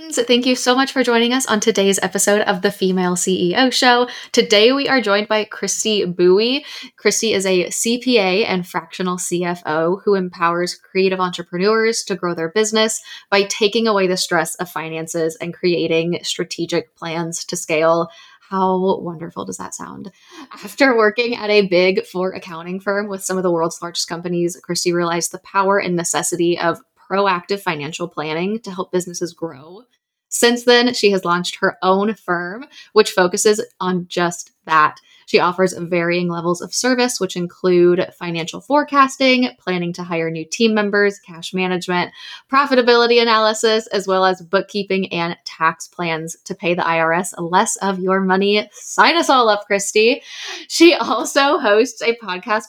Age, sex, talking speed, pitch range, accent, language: 10-29, female, 160 wpm, 175-215 Hz, American, English